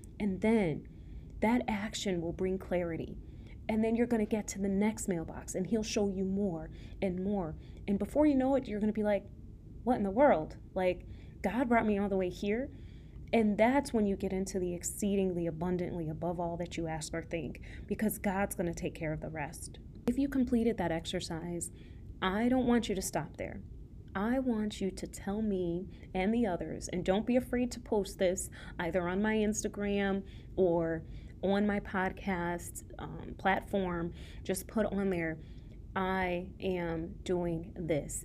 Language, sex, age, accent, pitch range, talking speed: English, female, 30-49, American, 175-210 Hz, 180 wpm